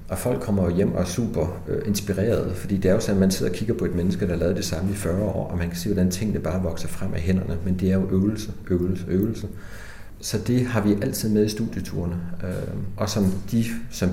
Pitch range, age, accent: 90-110 Hz, 40-59, native